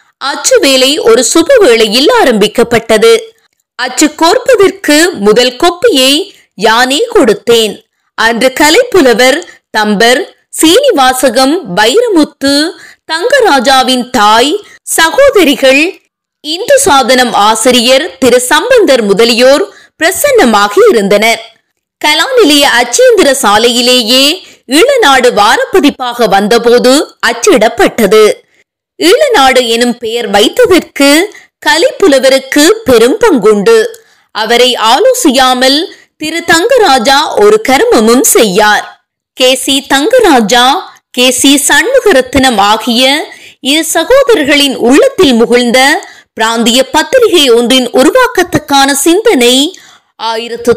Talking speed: 55 wpm